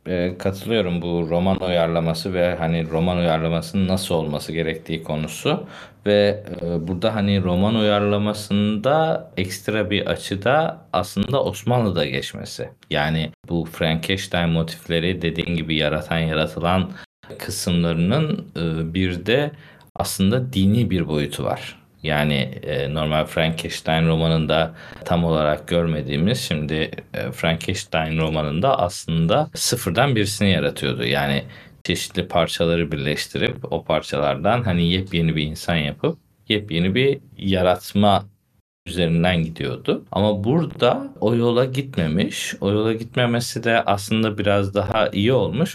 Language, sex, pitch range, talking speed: Turkish, male, 80-105 Hz, 110 wpm